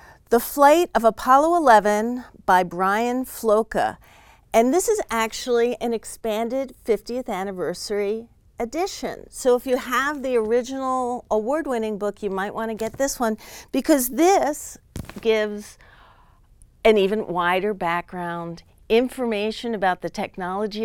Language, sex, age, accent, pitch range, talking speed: English, female, 40-59, American, 200-250 Hz, 125 wpm